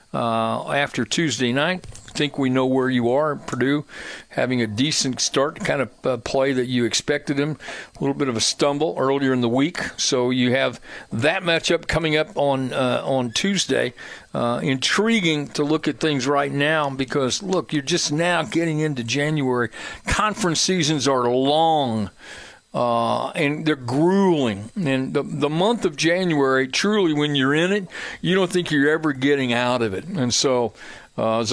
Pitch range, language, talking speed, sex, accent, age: 130-175 Hz, English, 175 wpm, male, American, 60-79